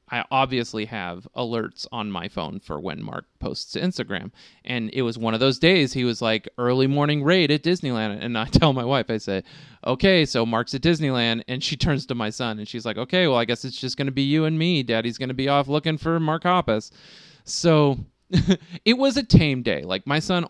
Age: 30-49